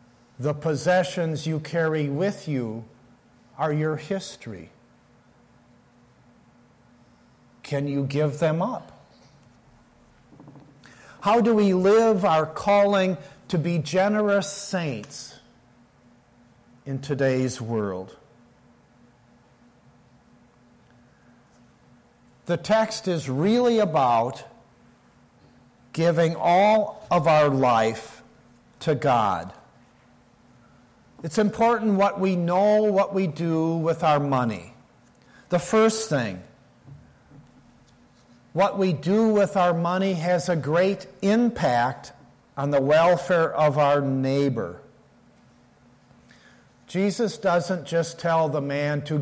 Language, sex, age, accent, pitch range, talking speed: English, male, 50-69, American, 120-180 Hz, 95 wpm